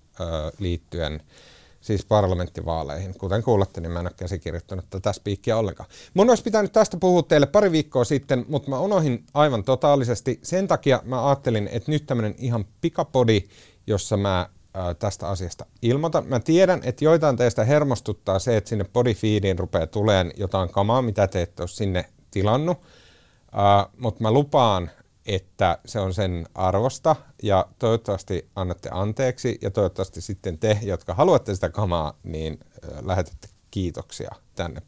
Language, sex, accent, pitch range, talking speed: Finnish, male, native, 95-135 Hz, 150 wpm